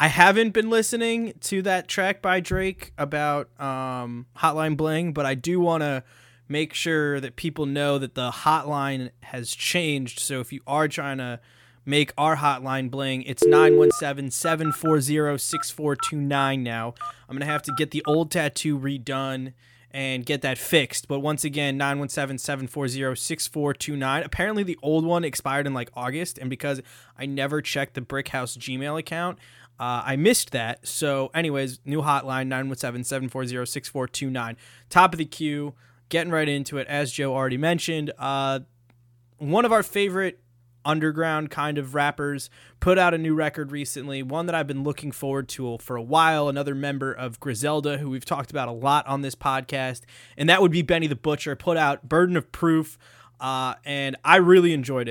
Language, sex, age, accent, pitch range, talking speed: English, male, 20-39, American, 130-155 Hz, 165 wpm